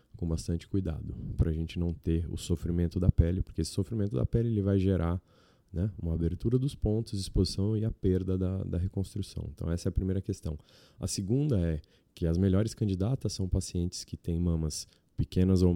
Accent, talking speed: Brazilian, 195 wpm